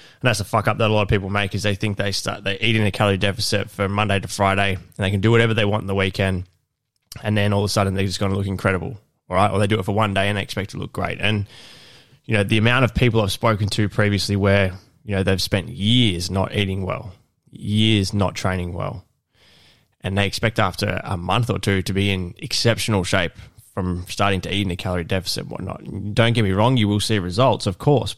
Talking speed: 255 wpm